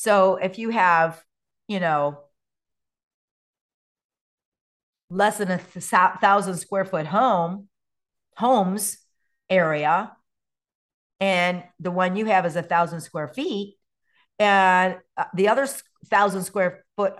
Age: 50-69